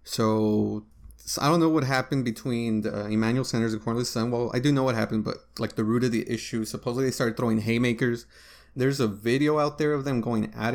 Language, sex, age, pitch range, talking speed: English, male, 20-39, 110-125 Hz, 225 wpm